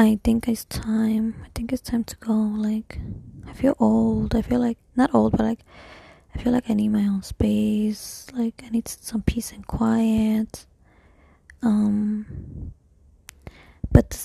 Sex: female